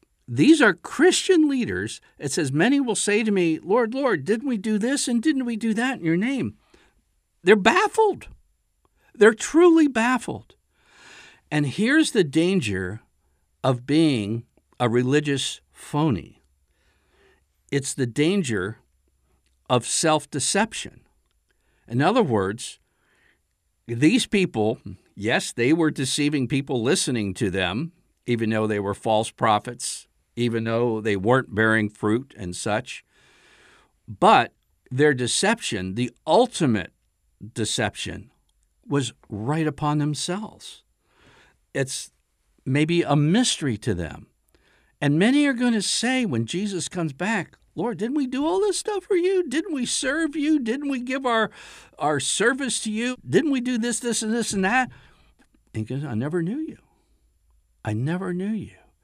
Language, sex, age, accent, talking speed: English, male, 60-79, American, 135 wpm